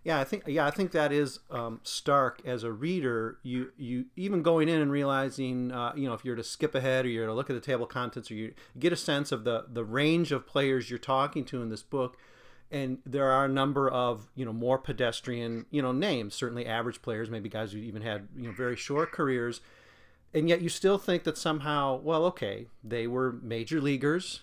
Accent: American